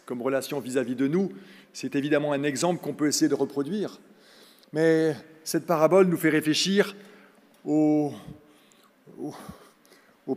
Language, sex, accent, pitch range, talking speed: French, male, French, 135-190 Hz, 135 wpm